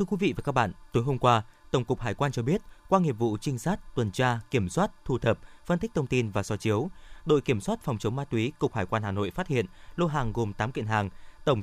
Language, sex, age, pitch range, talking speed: Vietnamese, male, 20-39, 115-150 Hz, 280 wpm